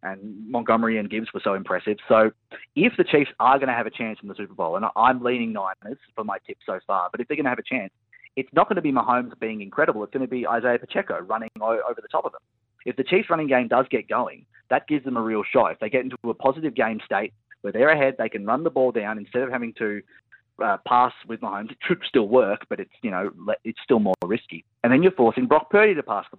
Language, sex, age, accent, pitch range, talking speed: English, male, 30-49, Australian, 110-135 Hz, 265 wpm